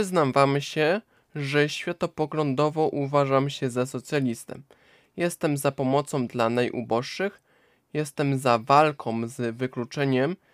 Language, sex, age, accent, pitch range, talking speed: Polish, male, 20-39, native, 120-150 Hz, 110 wpm